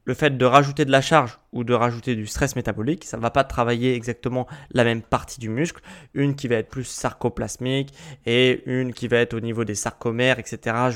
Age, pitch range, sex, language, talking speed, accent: 20-39, 120-150 Hz, male, French, 225 wpm, French